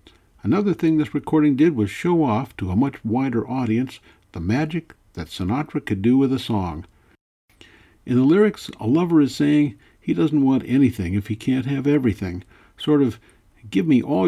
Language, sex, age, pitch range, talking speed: English, male, 60-79, 105-145 Hz, 180 wpm